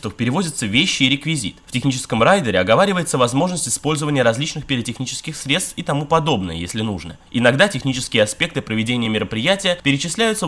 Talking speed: 140 wpm